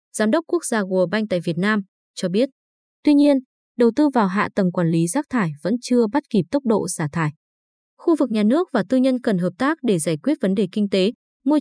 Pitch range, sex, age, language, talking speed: 190-250 Hz, female, 20-39, Vietnamese, 250 wpm